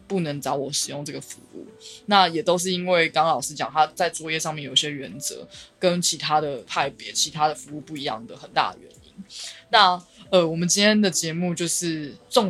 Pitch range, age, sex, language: 145-175 Hz, 20-39, female, Chinese